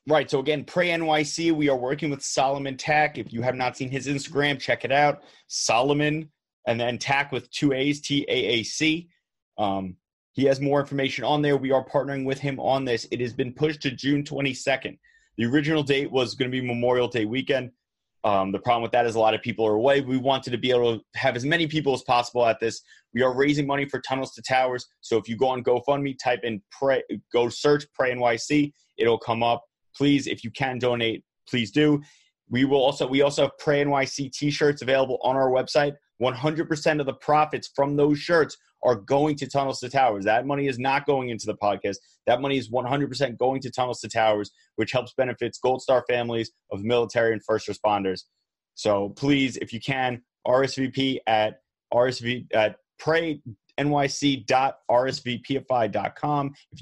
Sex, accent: male, American